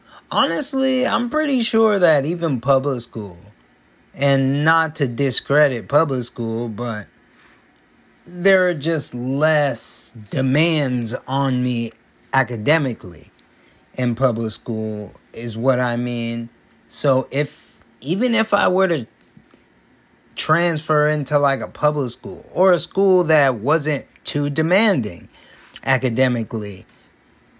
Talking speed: 110 wpm